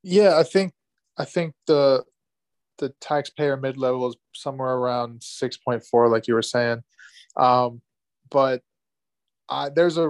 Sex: male